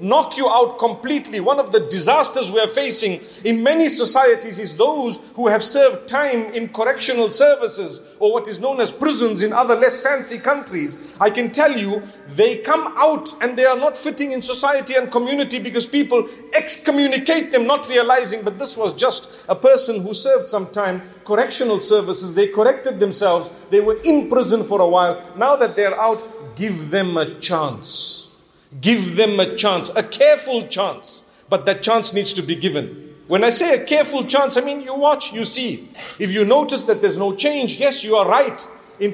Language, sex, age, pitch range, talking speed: English, male, 50-69, 215-280 Hz, 190 wpm